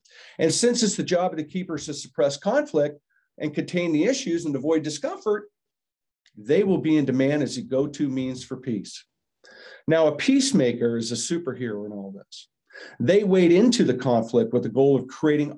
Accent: American